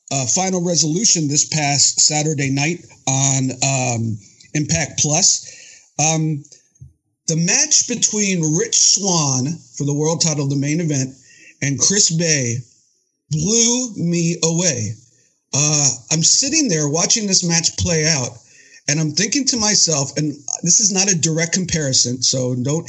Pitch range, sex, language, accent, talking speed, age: 130-165 Hz, male, English, American, 140 wpm, 50-69